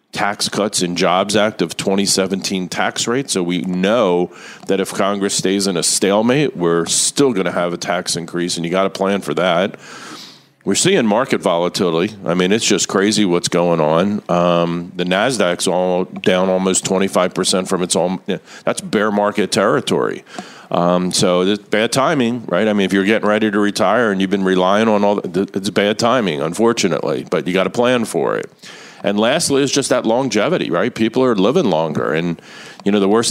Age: 50-69